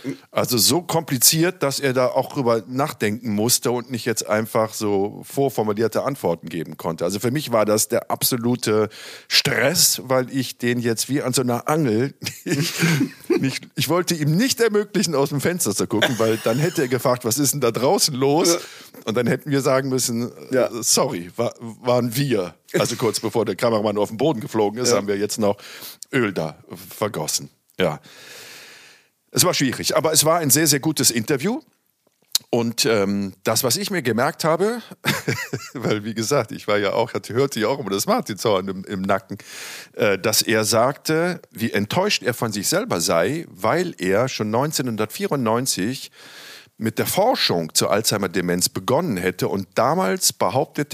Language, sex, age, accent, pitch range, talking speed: German, male, 50-69, German, 110-145 Hz, 175 wpm